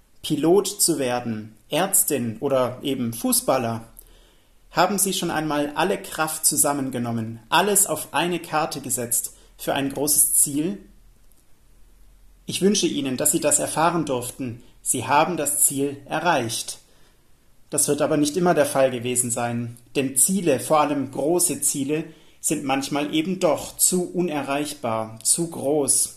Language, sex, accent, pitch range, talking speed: German, male, German, 130-170 Hz, 135 wpm